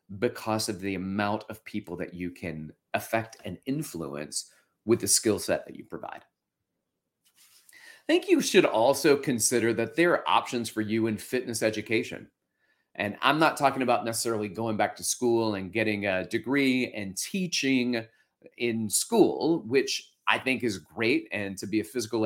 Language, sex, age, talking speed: English, male, 30-49, 165 wpm